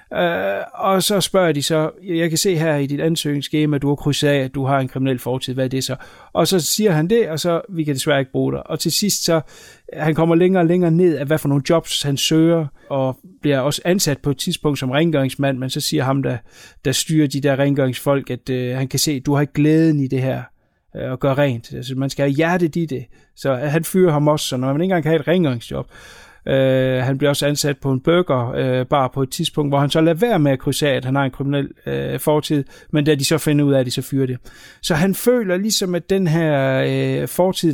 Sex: male